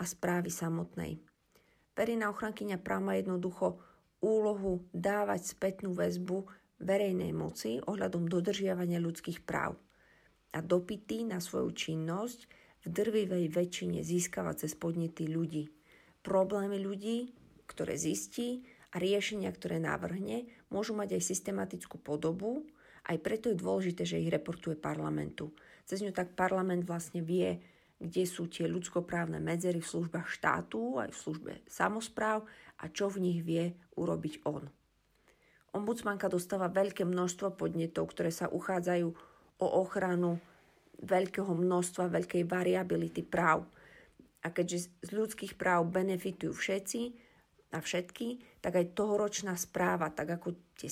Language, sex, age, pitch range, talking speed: Slovak, female, 40-59, 165-200 Hz, 125 wpm